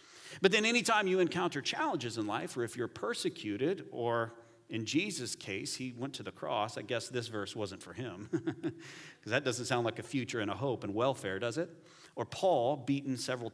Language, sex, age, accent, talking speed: English, male, 40-59, American, 210 wpm